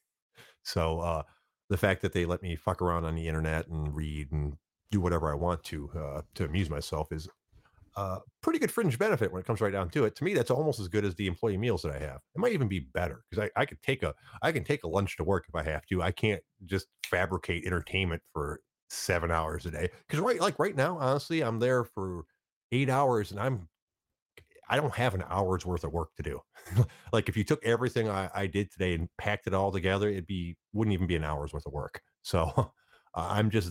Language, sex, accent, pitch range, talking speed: English, male, American, 85-105 Hz, 240 wpm